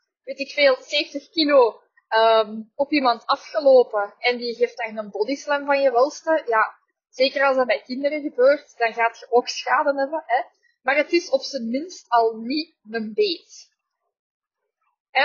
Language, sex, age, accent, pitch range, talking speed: Dutch, female, 20-39, Dutch, 235-295 Hz, 170 wpm